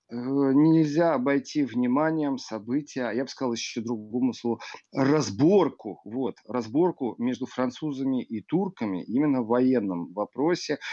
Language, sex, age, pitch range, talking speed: Russian, male, 40-59, 120-160 Hz, 115 wpm